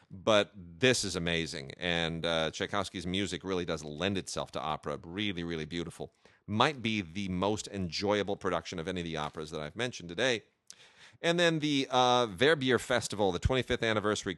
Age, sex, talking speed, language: 30-49, male, 170 wpm, English